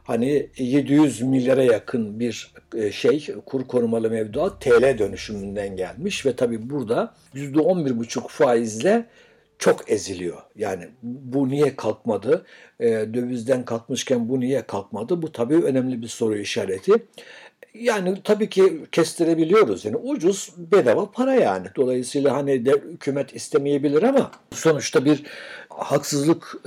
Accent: native